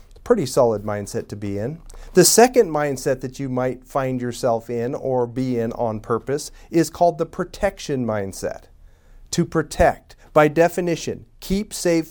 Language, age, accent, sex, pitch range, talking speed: English, 40-59, American, male, 120-155 Hz, 155 wpm